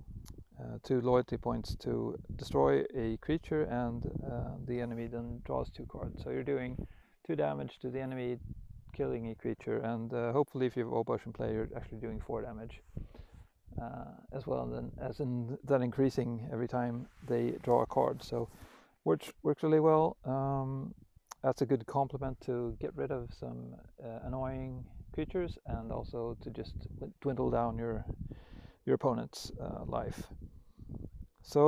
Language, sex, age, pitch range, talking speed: English, male, 30-49, 115-135 Hz, 155 wpm